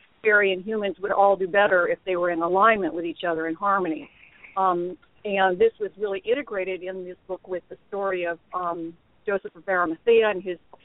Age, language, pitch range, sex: 50-69, English, 185-220 Hz, female